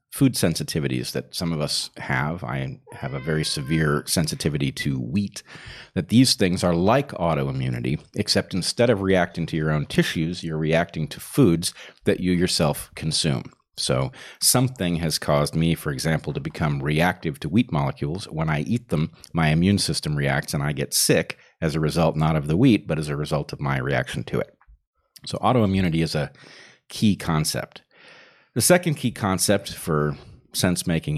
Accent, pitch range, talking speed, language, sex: American, 75-95 Hz, 175 wpm, English, male